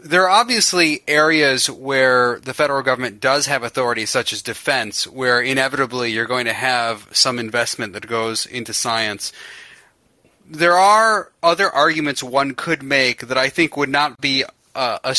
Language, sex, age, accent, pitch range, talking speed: English, male, 30-49, American, 120-145 Hz, 160 wpm